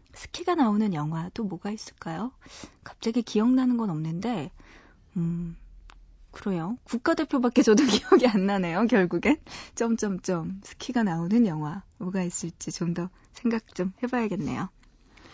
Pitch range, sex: 180-255 Hz, female